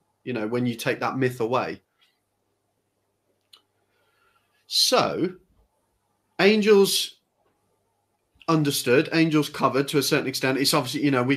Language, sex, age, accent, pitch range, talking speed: English, male, 30-49, British, 120-145 Hz, 115 wpm